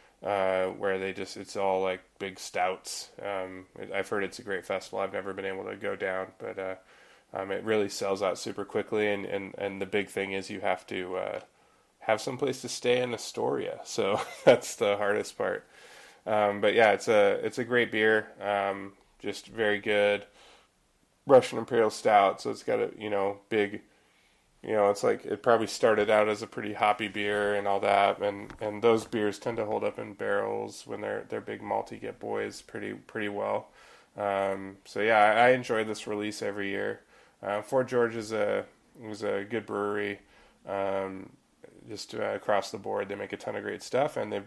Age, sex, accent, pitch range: 20-39, male, American, 100-110 Hz